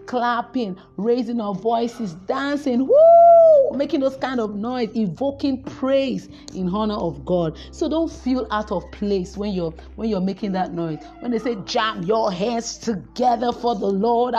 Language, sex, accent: English, female, Nigerian